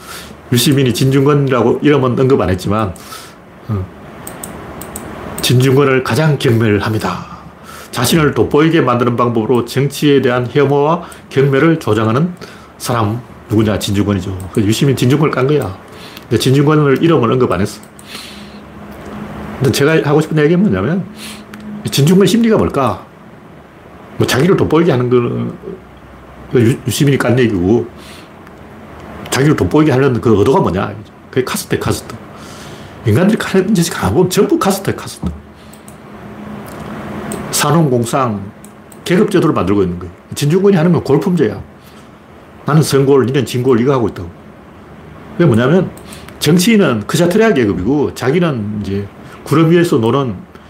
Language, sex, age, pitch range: Korean, male, 40-59, 120-175 Hz